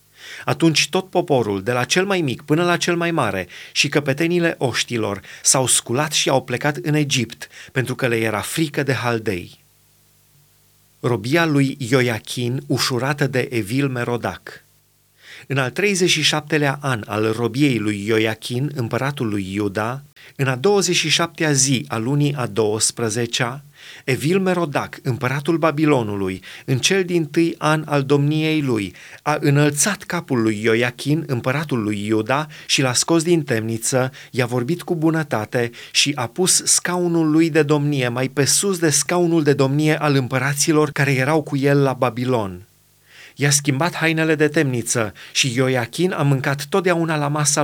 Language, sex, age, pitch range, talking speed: Romanian, male, 30-49, 125-155 Hz, 150 wpm